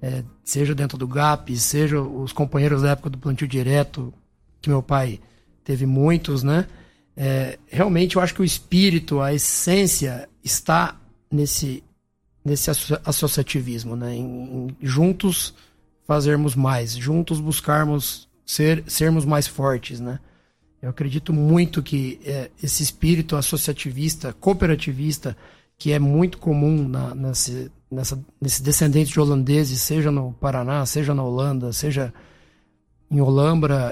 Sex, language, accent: male, Portuguese, Brazilian